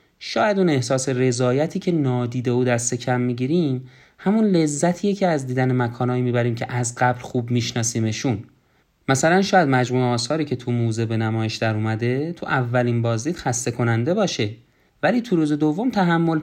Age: 30-49